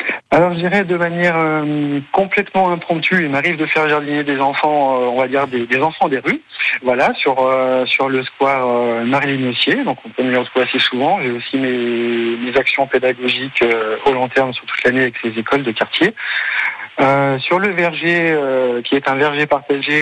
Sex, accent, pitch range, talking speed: male, French, 125-155 Hz, 200 wpm